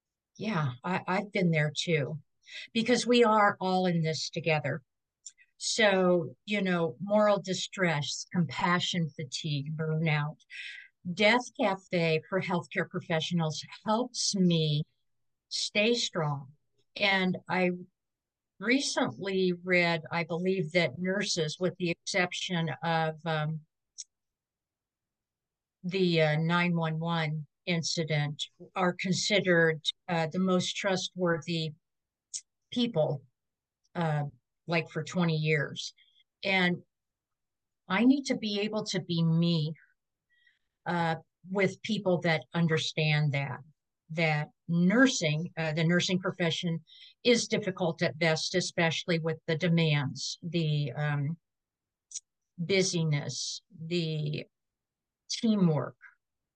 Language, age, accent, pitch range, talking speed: English, 50-69, American, 155-185 Hz, 100 wpm